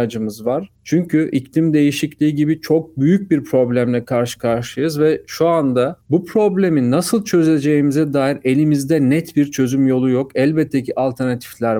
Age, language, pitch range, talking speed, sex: 40-59, Turkish, 130-155 Hz, 140 wpm, male